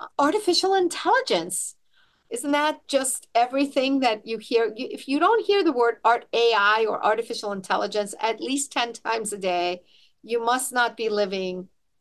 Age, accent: 50-69, American